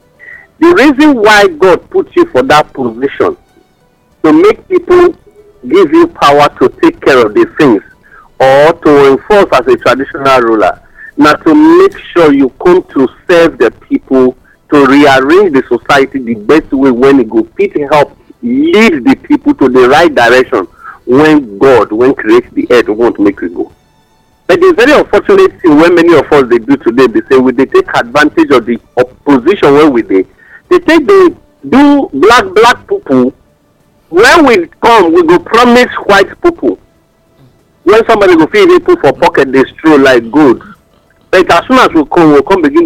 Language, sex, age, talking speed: English, male, 50-69, 180 wpm